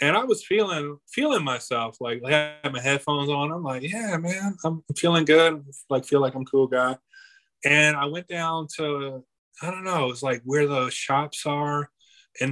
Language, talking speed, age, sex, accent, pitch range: English, 200 wpm, 20-39, male, American, 130-160 Hz